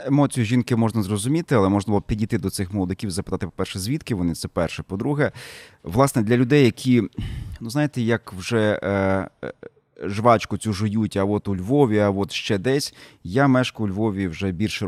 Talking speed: 190 wpm